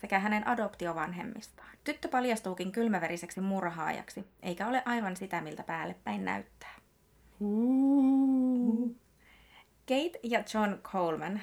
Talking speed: 95 wpm